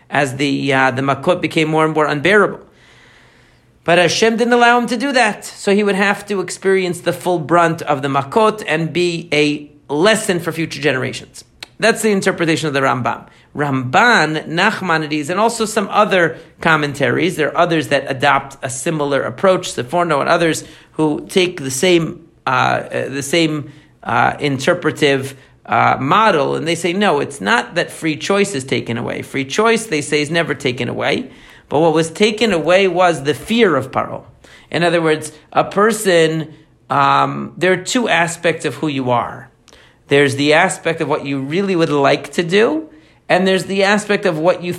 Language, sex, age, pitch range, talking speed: English, male, 40-59, 150-185 Hz, 180 wpm